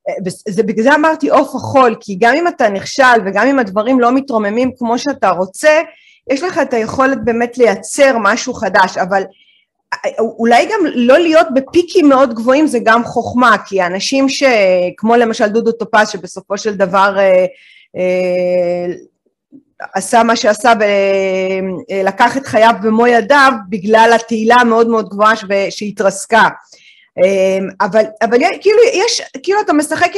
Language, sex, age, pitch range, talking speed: Hebrew, female, 30-49, 210-290 Hz, 150 wpm